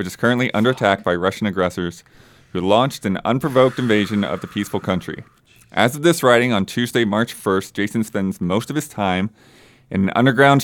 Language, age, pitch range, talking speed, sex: English, 30-49, 90-115 Hz, 190 wpm, male